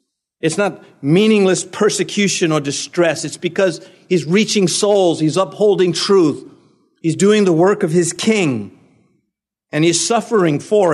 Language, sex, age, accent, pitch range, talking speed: English, male, 50-69, American, 160-230 Hz, 135 wpm